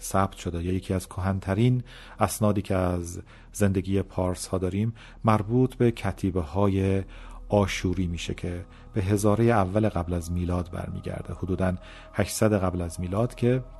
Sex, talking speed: male, 135 wpm